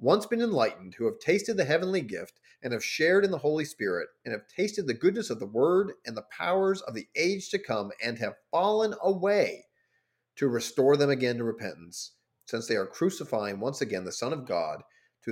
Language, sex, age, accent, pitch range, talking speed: English, male, 40-59, American, 120-185 Hz, 210 wpm